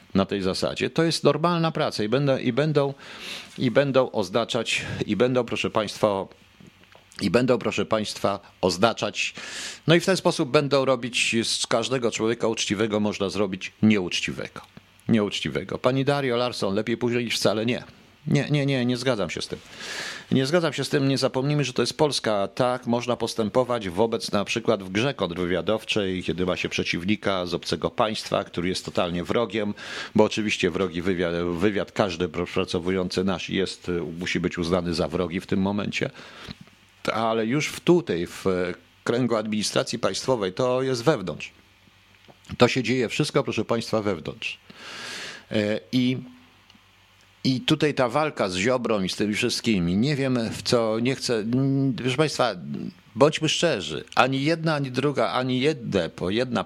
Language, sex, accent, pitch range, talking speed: Polish, male, native, 95-130 Hz, 155 wpm